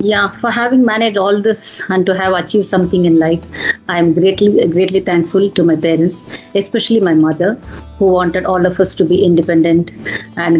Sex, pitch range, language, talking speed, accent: female, 165-195 Hz, English, 185 wpm, Indian